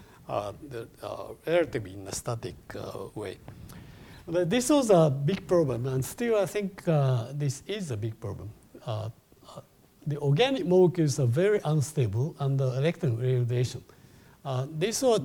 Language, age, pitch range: English, 50-69, 120-160 Hz